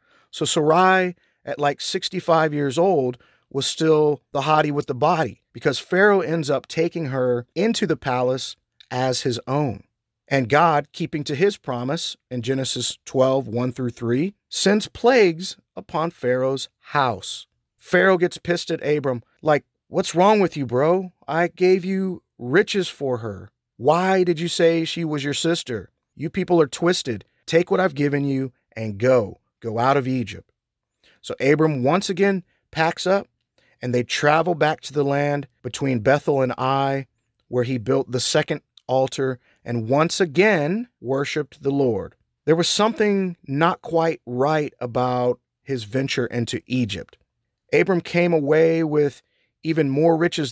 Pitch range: 125-170 Hz